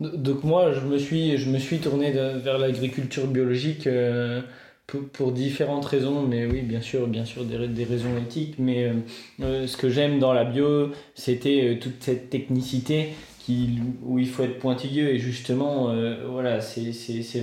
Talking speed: 185 wpm